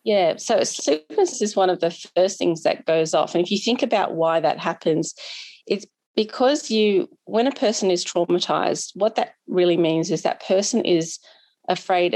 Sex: female